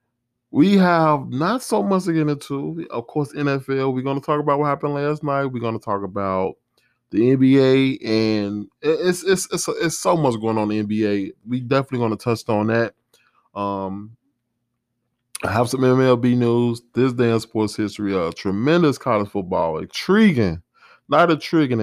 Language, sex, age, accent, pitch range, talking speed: English, male, 20-39, American, 105-140 Hz, 175 wpm